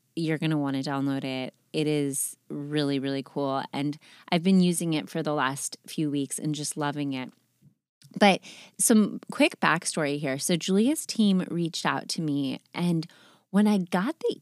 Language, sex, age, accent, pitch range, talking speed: English, female, 30-49, American, 145-185 Hz, 180 wpm